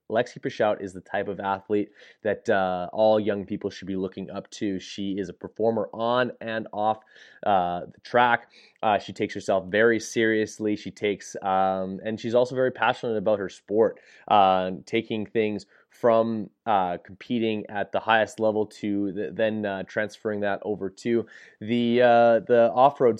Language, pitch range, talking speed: English, 95-115 Hz, 170 wpm